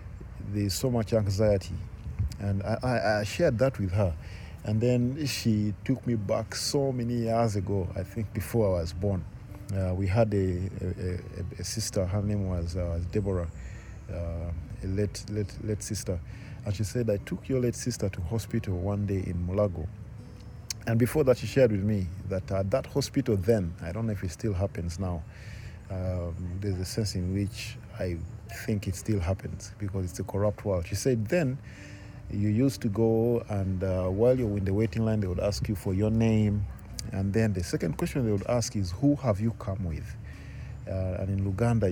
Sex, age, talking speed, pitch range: male, 40-59, 195 wpm, 95-115 Hz